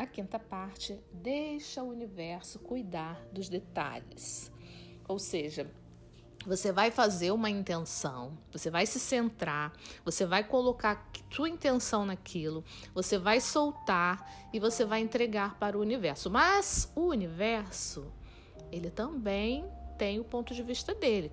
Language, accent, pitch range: Portuguese, Brazilian, 180-235 Hz